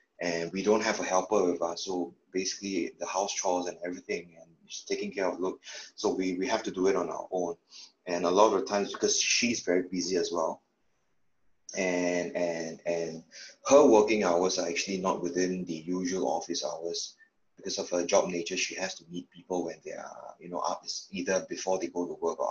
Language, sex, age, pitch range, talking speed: English, male, 20-39, 85-95 Hz, 215 wpm